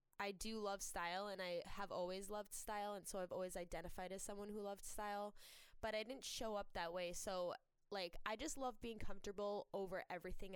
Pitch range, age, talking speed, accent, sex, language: 180-210 Hz, 10-29, 205 wpm, American, female, English